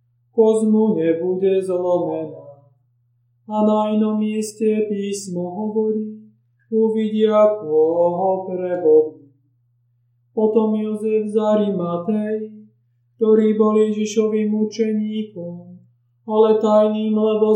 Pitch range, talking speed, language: 155-215 Hz, 80 wpm, Slovak